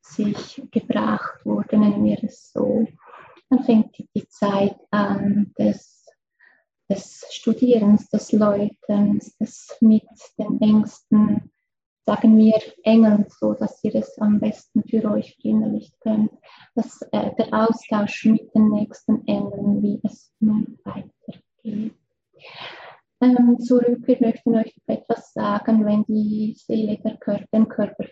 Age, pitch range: 20-39, 210-230 Hz